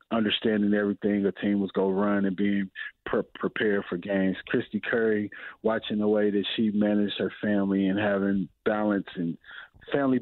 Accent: American